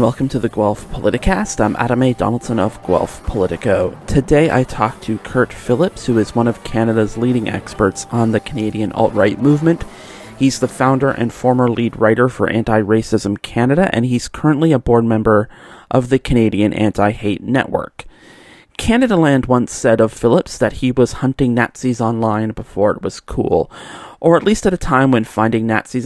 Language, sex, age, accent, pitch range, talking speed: English, male, 30-49, American, 110-130 Hz, 175 wpm